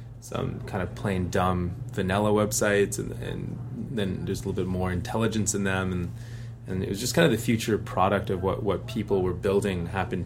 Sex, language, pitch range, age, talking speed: male, English, 95-120 Hz, 20-39, 205 wpm